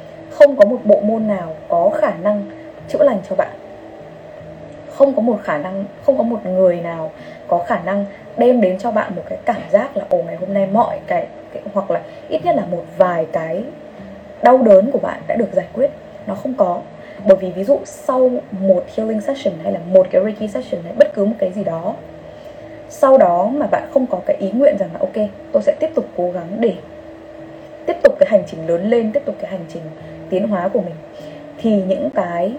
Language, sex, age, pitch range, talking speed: Vietnamese, female, 20-39, 195-300 Hz, 220 wpm